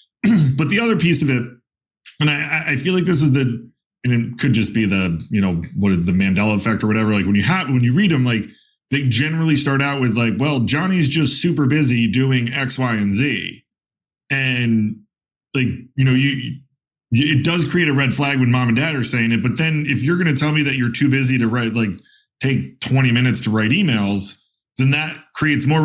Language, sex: English, male